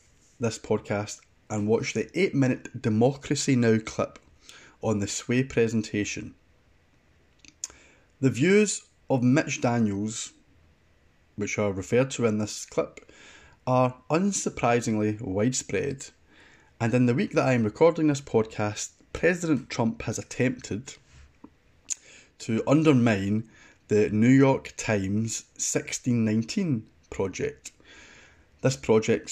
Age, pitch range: 20-39, 105-140 Hz